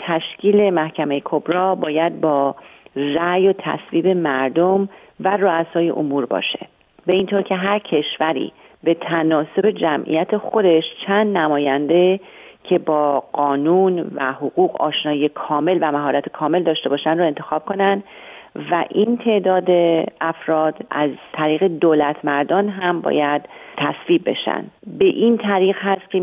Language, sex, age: Persian, female, 40-59